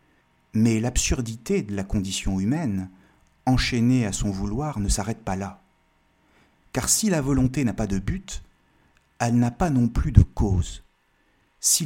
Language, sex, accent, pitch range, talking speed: French, male, French, 100-130 Hz, 150 wpm